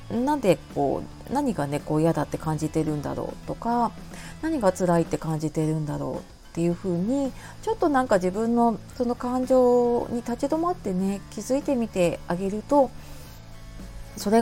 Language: Japanese